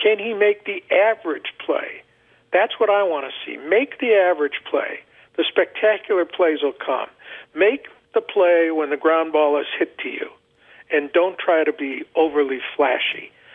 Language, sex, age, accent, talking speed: English, male, 50-69, American, 175 wpm